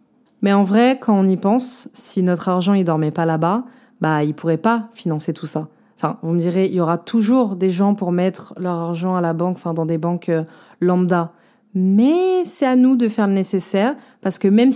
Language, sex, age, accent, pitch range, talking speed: French, female, 20-39, French, 180-235 Hz, 230 wpm